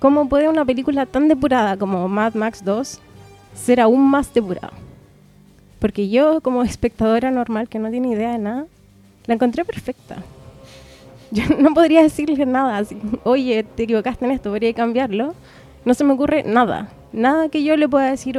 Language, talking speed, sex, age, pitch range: Spanish, 170 wpm, female, 20-39, 210-270 Hz